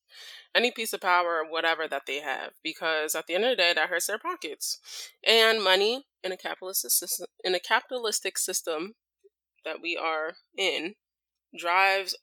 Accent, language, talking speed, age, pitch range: American, English, 170 wpm, 20-39, 160-210 Hz